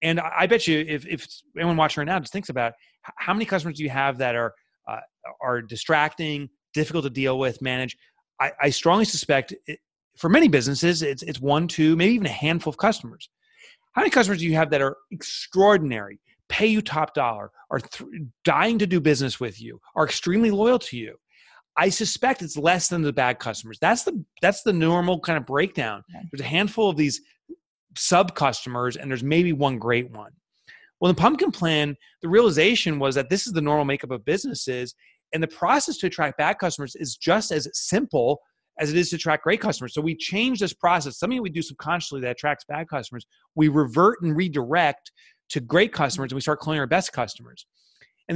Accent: American